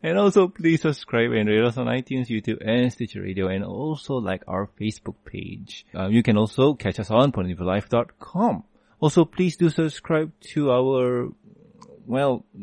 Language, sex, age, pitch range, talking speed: English, male, 20-39, 105-140 Hz, 160 wpm